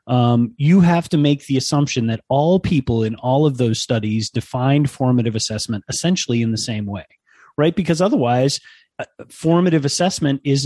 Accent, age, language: American, 30-49, English